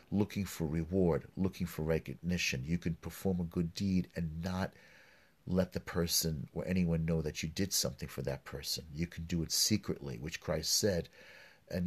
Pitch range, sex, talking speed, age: 85-100 Hz, male, 180 wpm, 40-59